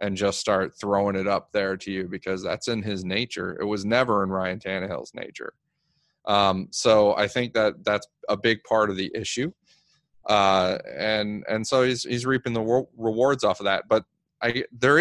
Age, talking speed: 30-49, 190 wpm